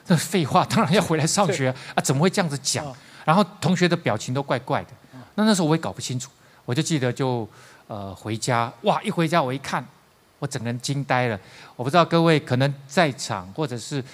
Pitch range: 110-145 Hz